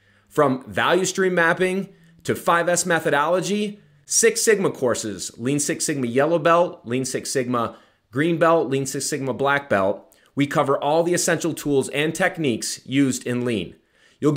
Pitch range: 125-175 Hz